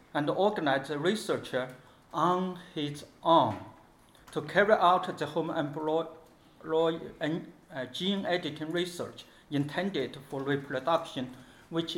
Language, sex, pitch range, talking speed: English, male, 130-165 Hz, 100 wpm